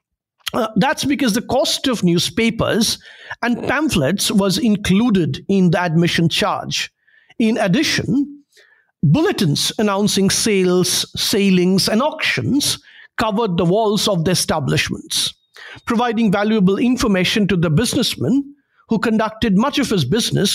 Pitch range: 180-230 Hz